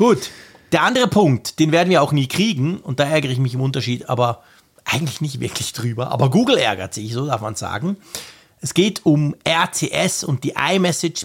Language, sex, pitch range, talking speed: German, male, 130-165 Hz, 195 wpm